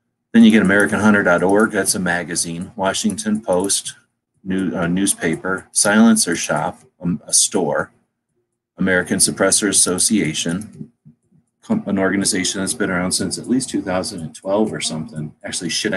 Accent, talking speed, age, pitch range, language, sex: American, 120 wpm, 30-49, 85-110 Hz, English, male